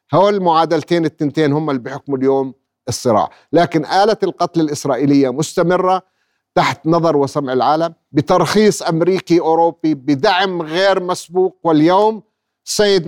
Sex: male